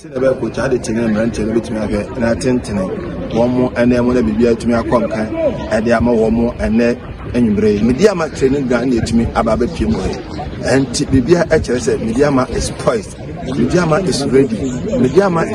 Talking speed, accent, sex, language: 125 wpm, Nigerian, male, English